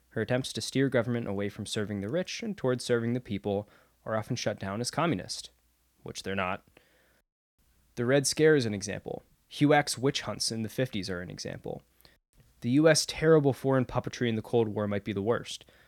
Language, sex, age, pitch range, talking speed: English, male, 20-39, 105-130 Hz, 195 wpm